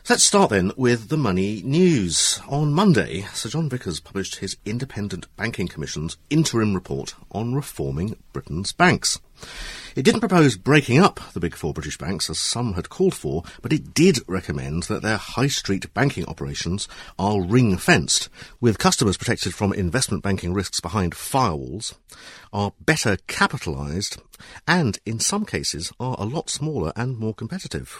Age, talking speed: 50-69, 155 wpm